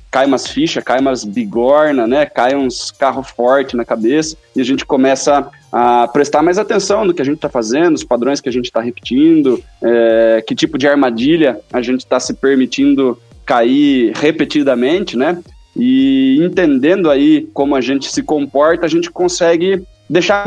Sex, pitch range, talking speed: male, 120-185 Hz, 175 wpm